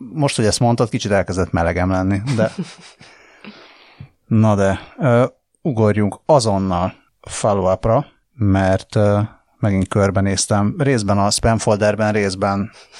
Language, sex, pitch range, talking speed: Hungarian, male, 95-120 Hz, 100 wpm